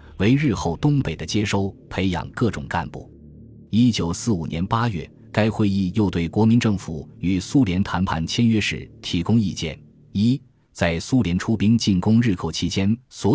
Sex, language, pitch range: male, Chinese, 85-115 Hz